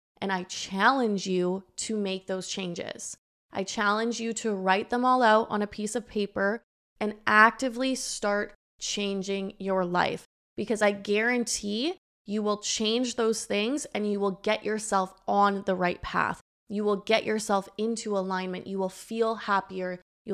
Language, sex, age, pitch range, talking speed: English, female, 20-39, 190-215 Hz, 160 wpm